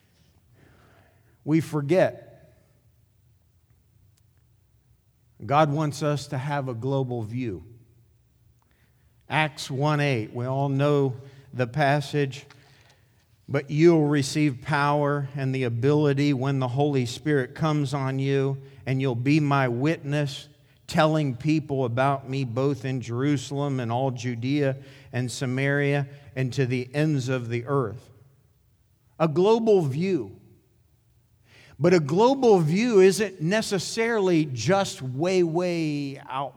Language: English